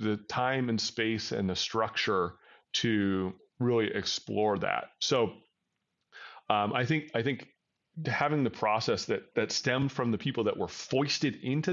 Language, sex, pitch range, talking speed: English, male, 105-135 Hz, 155 wpm